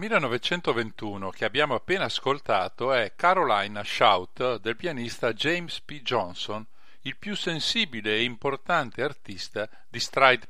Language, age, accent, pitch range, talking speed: Italian, 50-69, native, 115-160 Hz, 120 wpm